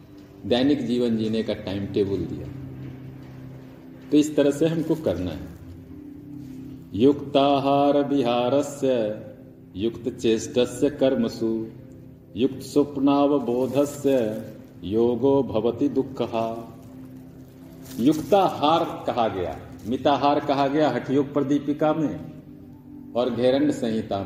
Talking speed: 95 wpm